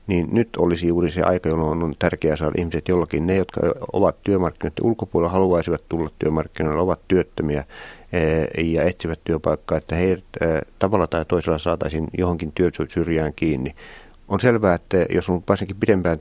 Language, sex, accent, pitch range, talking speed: Finnish, male, native, 80-95 Hz, 155 wpm